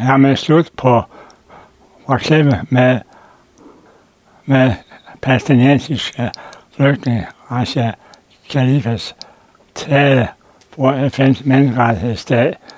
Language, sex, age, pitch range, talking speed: Danish, male, 60-79, 120-135 Hz, 80 wpm